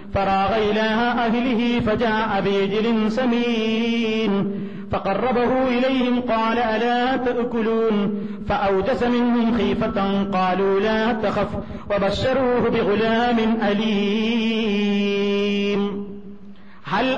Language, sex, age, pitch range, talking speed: Malayalam, male, 40-59, 200-245 Hz, 75 wpm